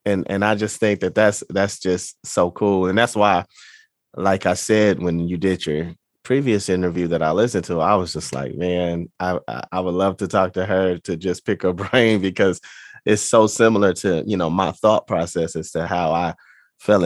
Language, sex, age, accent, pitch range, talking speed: English, male, 20-39, American, 90-105 Hz, 210 wpm